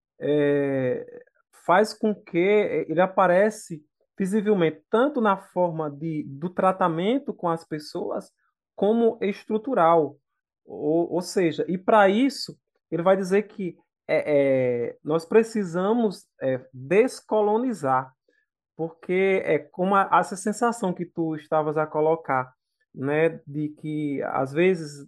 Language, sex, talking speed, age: Portuguese, male, 120 wpm, 20-39